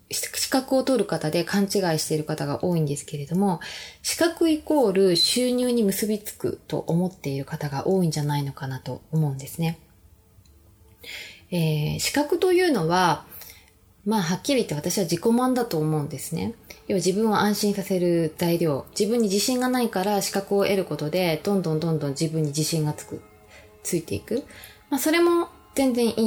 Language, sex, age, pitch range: Japanese, female, 20-39, 155-240 Hz